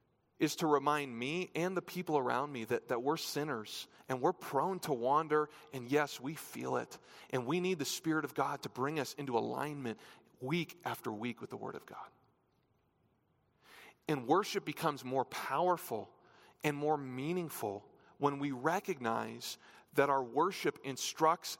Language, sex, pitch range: English, male, 120-165 Hz